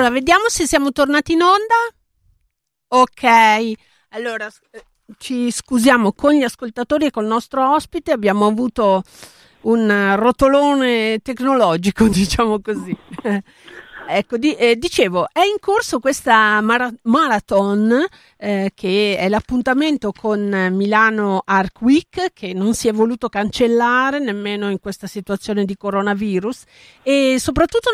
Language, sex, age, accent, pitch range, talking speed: Italian, female, 50-69, native, 200-265 Hz, 125 wpm